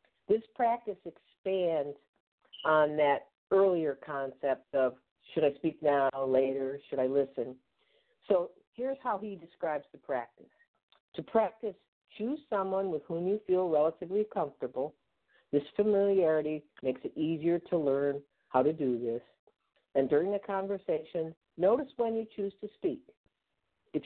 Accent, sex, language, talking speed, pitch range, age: American, female, English, 135 wpm, 145-215 Hz, 50-69